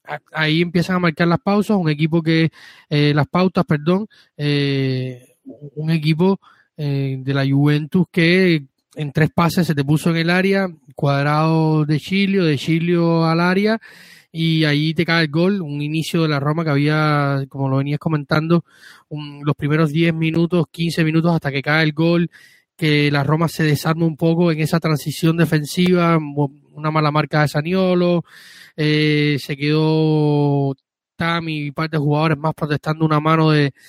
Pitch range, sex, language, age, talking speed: 150-165 Hz, male, Spanish, 20-39, 170 wpm